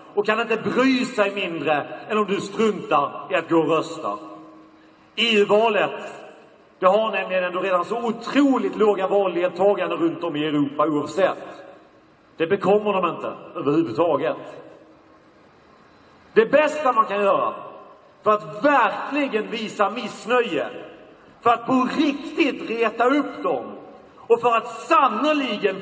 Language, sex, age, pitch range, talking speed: Swedish, male, 40-59, 205-265 Hz, 130 wpm